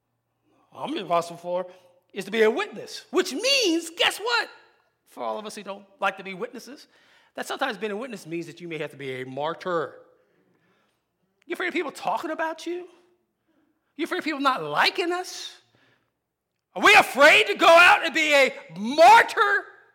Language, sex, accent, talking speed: English, male, American, 180 wpm